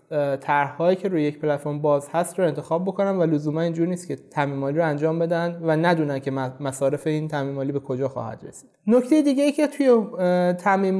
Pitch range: 155-200 Hz